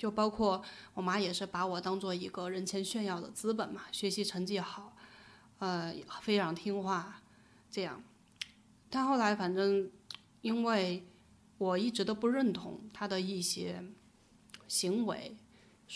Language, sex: Chinese, female